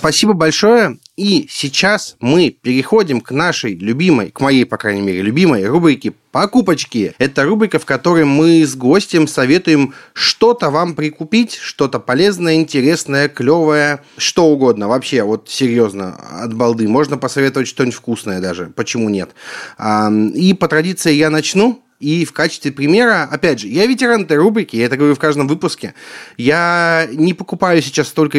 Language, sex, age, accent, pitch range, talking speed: Russian, male, 30-49, native, 135-195 Hz, 150 wpm